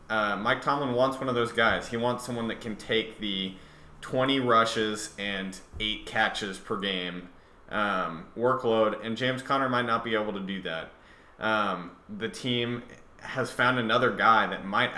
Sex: male